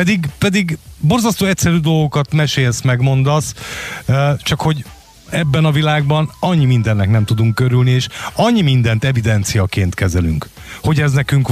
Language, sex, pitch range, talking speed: Hungarian, male, 105-145 Hz, 130 wpm